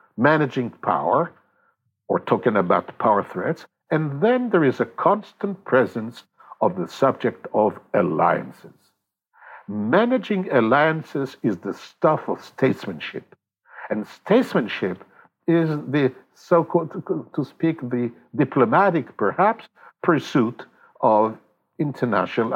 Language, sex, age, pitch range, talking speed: English, male, 60-79, 130-205 Hz, 105 wpm